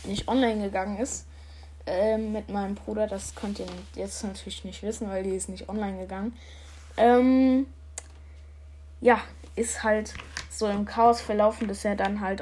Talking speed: 160 wpm